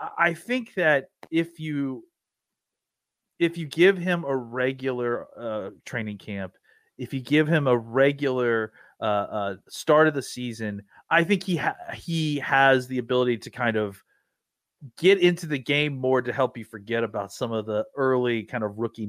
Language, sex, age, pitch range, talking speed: English, male, 30-49, 125-165 Hz, 170 wpm